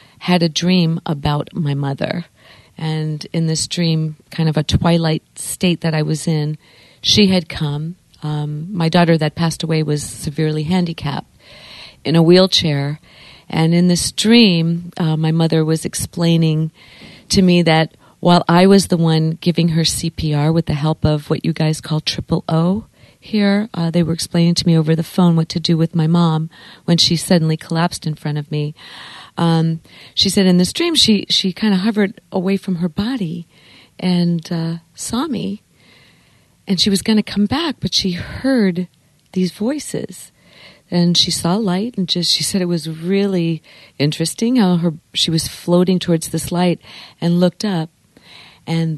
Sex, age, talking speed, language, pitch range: female, 40-59, 175 wpm, English, 155-180 Hz